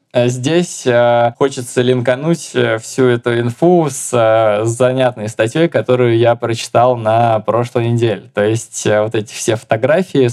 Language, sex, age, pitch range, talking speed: Russian, male, 20-39, 115-130 Hz, 120 wpm